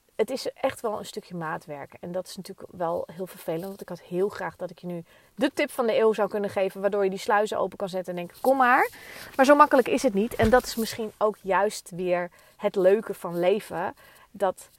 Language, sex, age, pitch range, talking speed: Dutch, female, 30-49, 185-220 Hz, 245 wpm